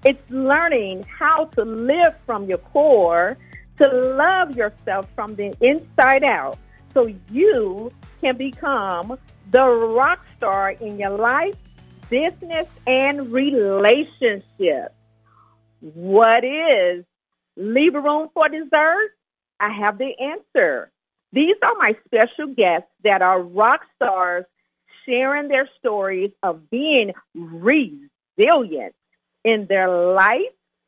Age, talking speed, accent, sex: 50-69, 110 wpm, American, female